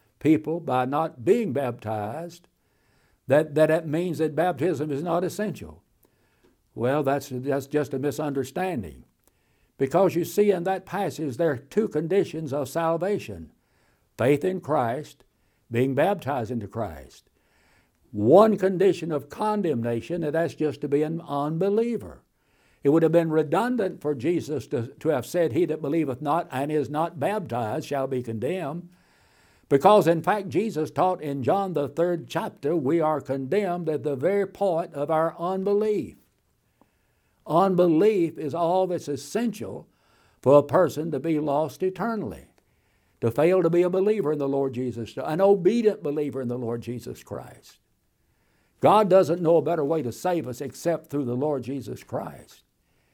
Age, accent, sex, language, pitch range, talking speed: 60-79, American, male, English, 135-175 Hz, 150 wpm